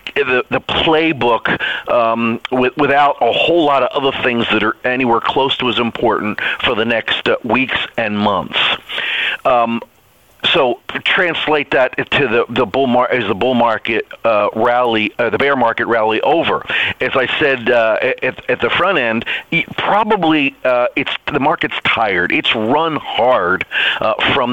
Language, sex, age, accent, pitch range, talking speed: English, male, 40-59, American, 120-150 Hz, 165 wpm